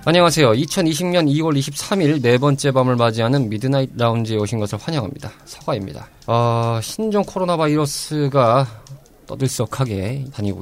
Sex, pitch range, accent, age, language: male, 105-140 Hz, native, 20-39, Korean